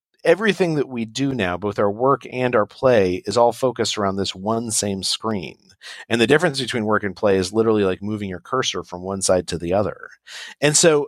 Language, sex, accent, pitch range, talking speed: English, male, American, 95-135 Hz, 215 wpm